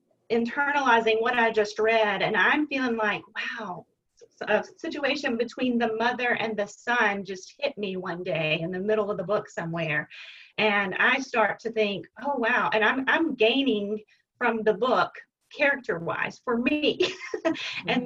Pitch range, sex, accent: 215-285 Hz, female, American